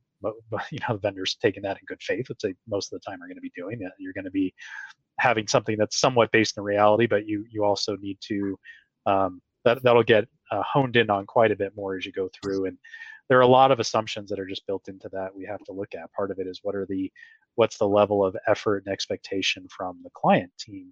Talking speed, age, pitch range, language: 260 wpm, 20-39, 95-110 Hz, English